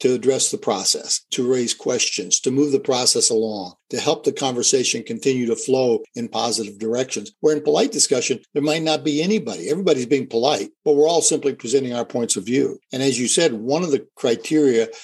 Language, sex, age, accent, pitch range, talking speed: English, male, 60-79, American, 120-150 Hz, 205 wpm